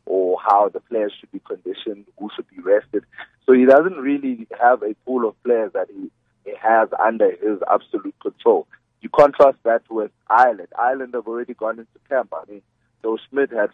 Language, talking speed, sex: English, 190 wpm, male